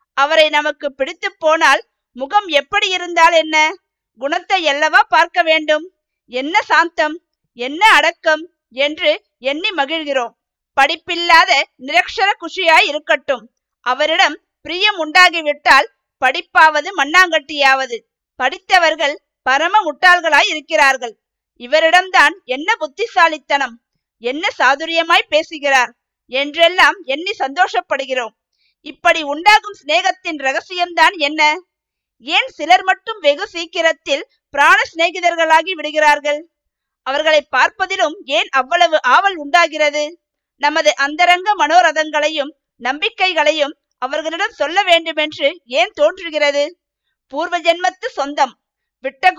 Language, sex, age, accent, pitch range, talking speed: Tamil, female, 50-69, native, 285-350 Hz, 85 wpm